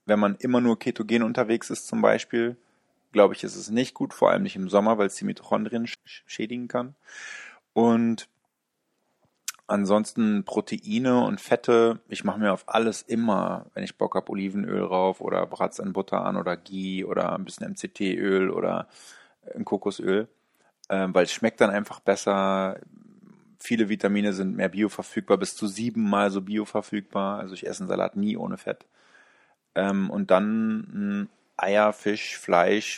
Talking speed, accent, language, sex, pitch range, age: 160 wpm, German, German, male, 100-120 Hz, 20-39